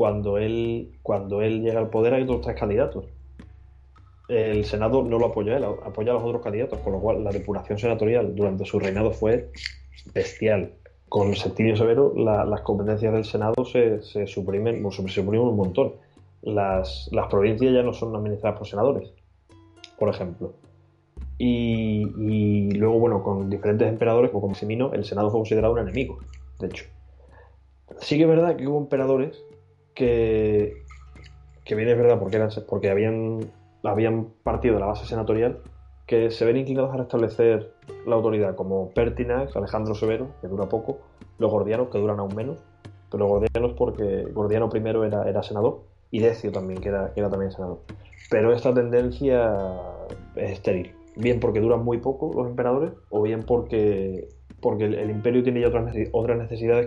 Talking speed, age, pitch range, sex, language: 175 wpm, 20-39, 95-115 Hz, male, Spanish